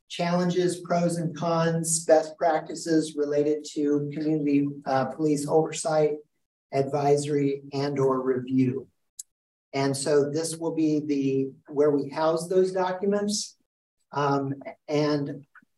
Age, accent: 50-69, American